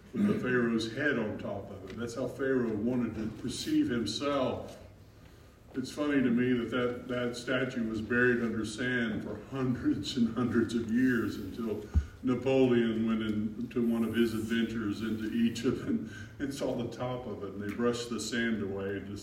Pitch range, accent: 100-125 Hz, American